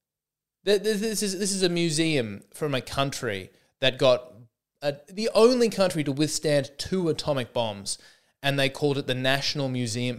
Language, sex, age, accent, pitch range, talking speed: English, male, 20-39, Australian, 120-170 Hz, 160 wpm